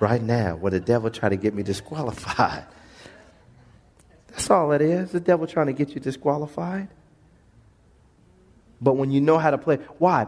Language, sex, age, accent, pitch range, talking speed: English, male, 40-59, American, 140-205 Hz, 170 wpm